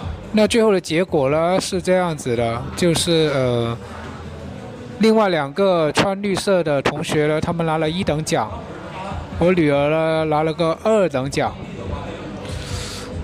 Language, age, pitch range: Chinese, 20-39, 130-185 Hz